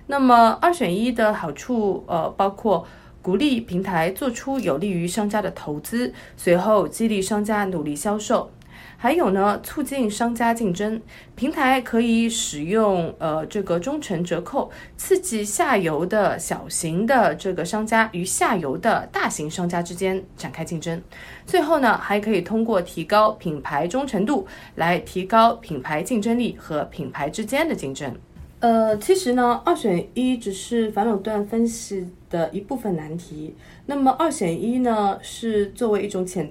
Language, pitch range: Chinese, 180-235 Hz